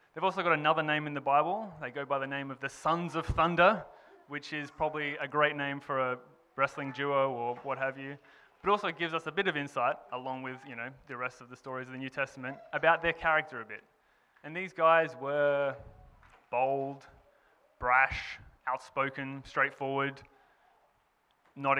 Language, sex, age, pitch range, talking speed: English, male, 20-39, 135-155 Hz, 190 wpm